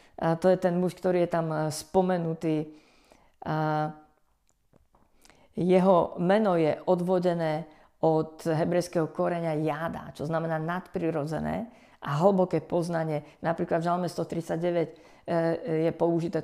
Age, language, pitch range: 50-69, Slovak, 160-185 Hz